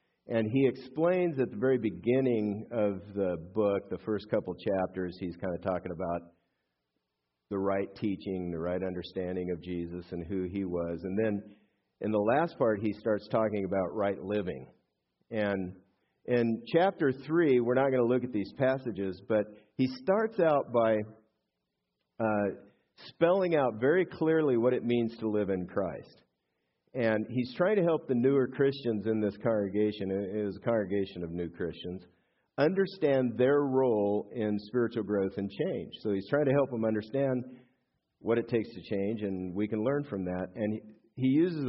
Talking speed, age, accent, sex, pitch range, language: 170 wpm, 50-69, American, male, 90-120 Hz, English